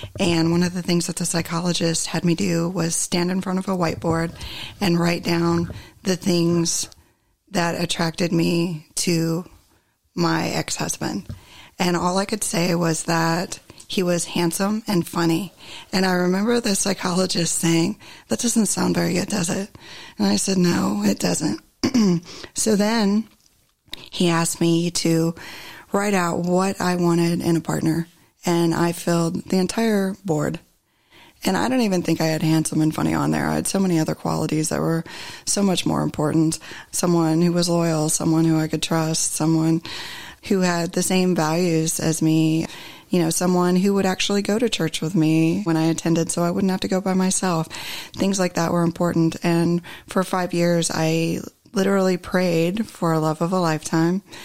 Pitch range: 165-185 Hz